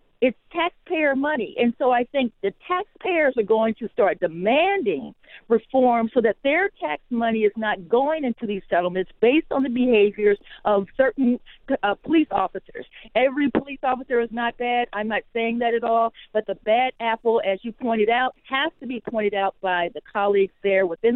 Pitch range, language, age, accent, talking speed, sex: 215-290 Hz, English, 50-69, American, 185 wpm, female